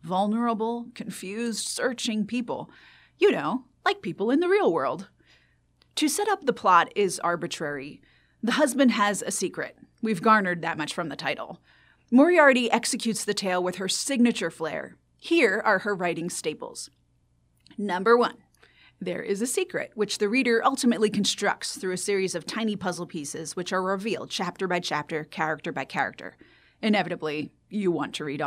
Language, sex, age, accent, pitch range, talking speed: English, female, 30-49, American, 180-250 Hz, 160 wpm